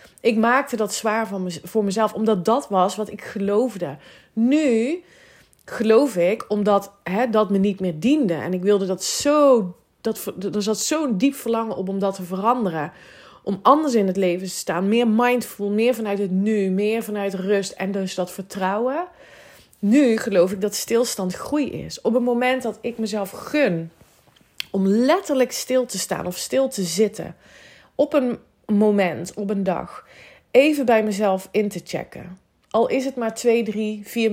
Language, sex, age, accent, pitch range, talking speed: Dutch, female, 30-49, Dutch, 195-245 Hz, 175 wpm